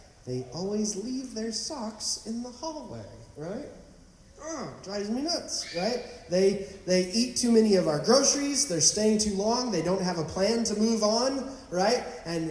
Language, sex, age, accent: English, male, 30-49, American